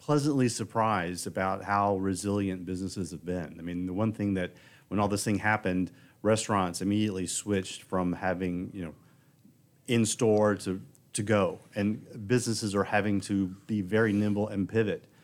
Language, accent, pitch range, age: English, American, 95-115 Hz, 40-59